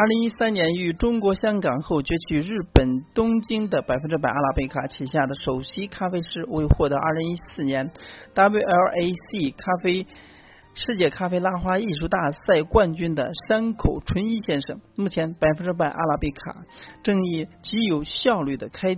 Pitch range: 145-200 Hz